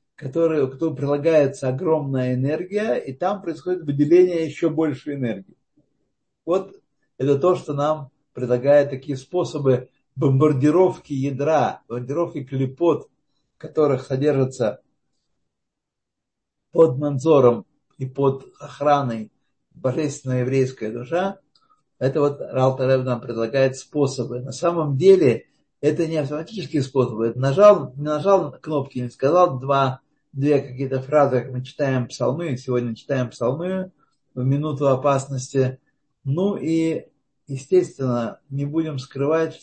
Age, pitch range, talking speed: 60-79, 130-155 Hz, 110 wpm